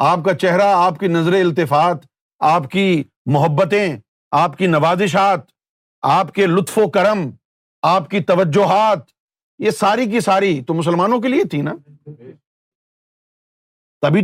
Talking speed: 135 wpm